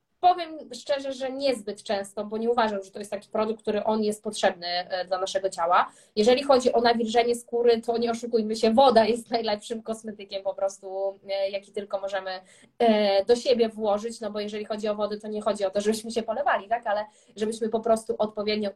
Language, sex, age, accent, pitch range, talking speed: Polish, female, 20-39, native, 200-245 Hz, 195 wpm